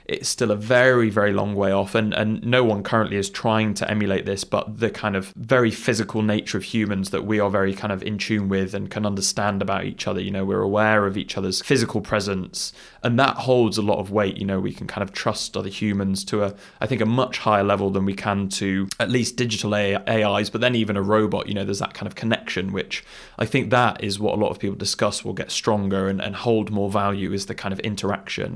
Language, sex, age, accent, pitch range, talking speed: English, male, 20-39, British, 100-110 Hz, 250 wpm